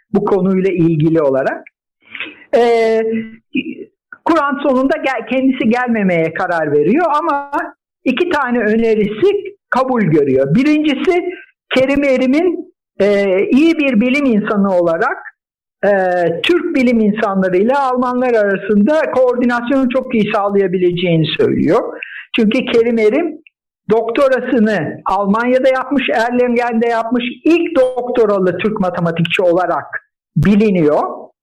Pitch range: 195-275 Hz